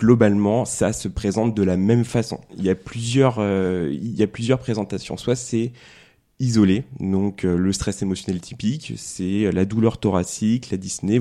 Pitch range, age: 95-115 Hz, 20-39